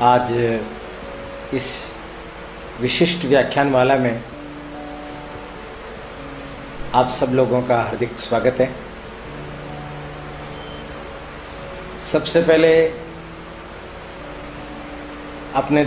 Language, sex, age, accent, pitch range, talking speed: Hindi, male, 50-69, native, 90-150 Hz, 55 wpm